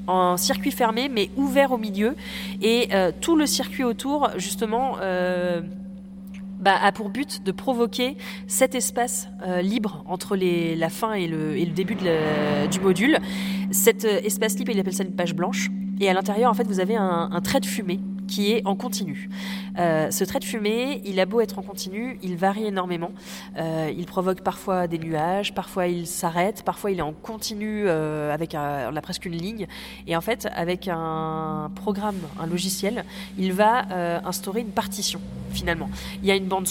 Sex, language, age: female, French, 20-39